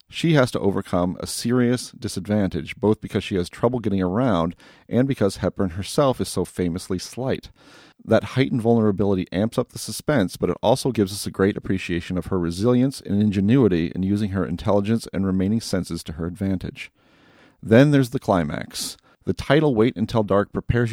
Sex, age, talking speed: male, 40-59, 180 wpm